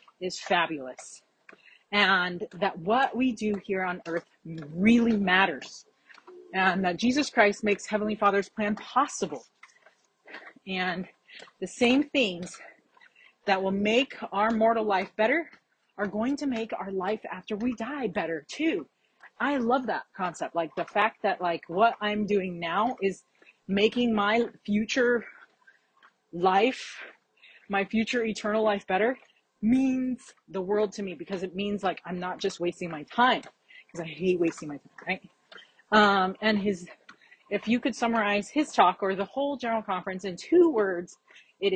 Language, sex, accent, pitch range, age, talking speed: English, female, American, 185-240 Hz, 30-49, 150 wpm